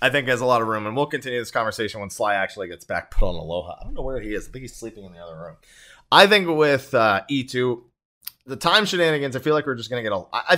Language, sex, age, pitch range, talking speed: English, male, 20-39, 105-155 Hz, 295 wpm